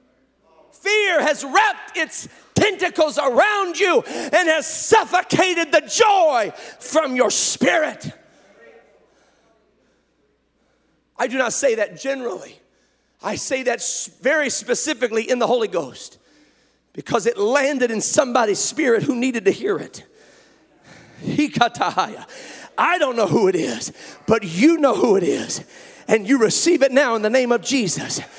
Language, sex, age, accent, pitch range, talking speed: English, male, 40-59, American, 260-370 Hz, 135 wpm